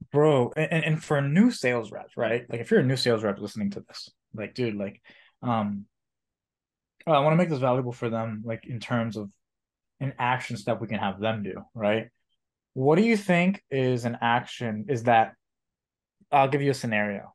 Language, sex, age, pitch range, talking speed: English, male, 20-39, 105-130 Hz, 195 wpm